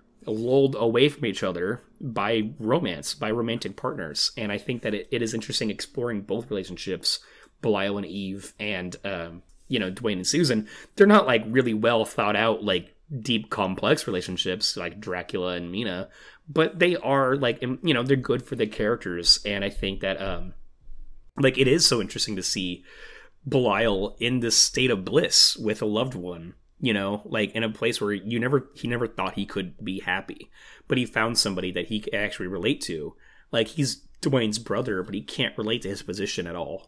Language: English